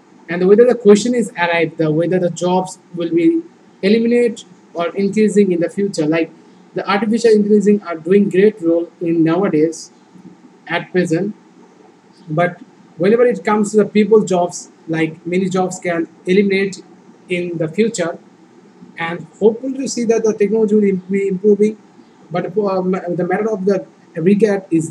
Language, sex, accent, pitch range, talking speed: English, male, Indian, 175-210 Hz, 150 wpm